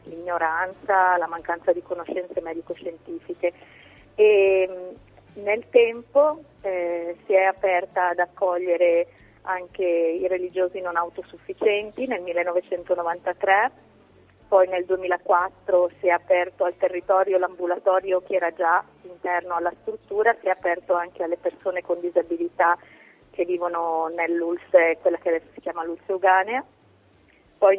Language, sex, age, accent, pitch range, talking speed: Italian, female, 30-49, native, 170-190 Hz, 120 wpm